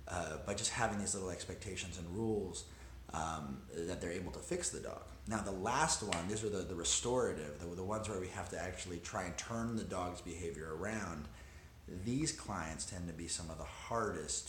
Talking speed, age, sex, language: 205 wpm, 30-49, male, English